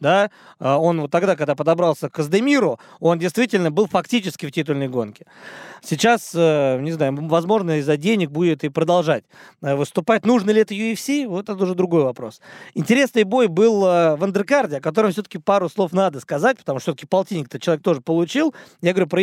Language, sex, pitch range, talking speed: Russian, male, 155-210 Hz, 175 wpm